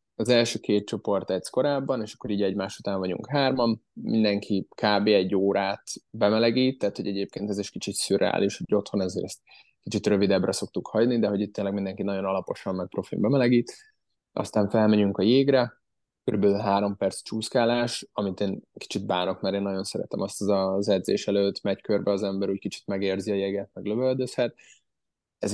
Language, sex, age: Hungarian, male, 20-39